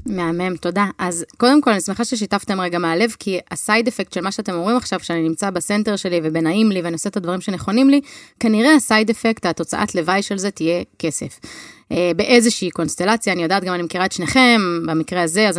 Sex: female